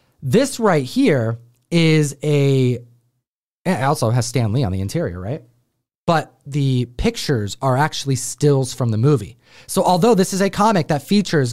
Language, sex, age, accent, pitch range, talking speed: English, male, 30-49, American, 125-160 Hz, 160 wpm